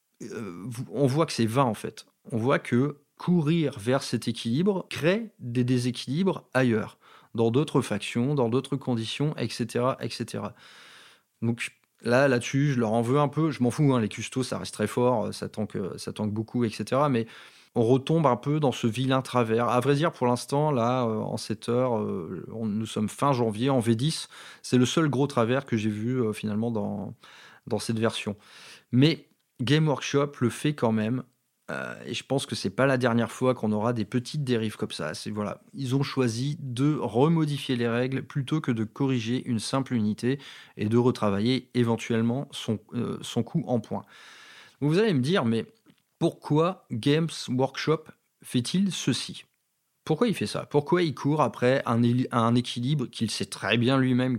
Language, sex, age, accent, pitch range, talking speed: French, male, 30-49, French, 115-145 Hz, 190 wpm